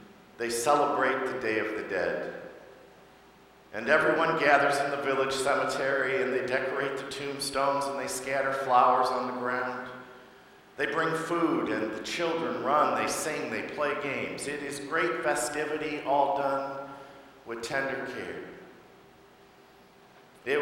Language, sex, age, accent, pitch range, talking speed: English, male, 50-69, American, 135-185 Hz, 140 wpm